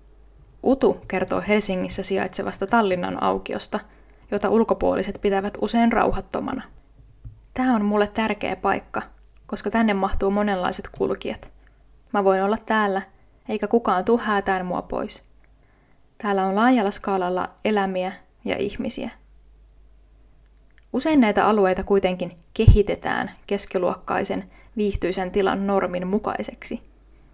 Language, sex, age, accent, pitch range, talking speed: Finnish, female, 20-39, native, 185-215 Hz, 105 wpm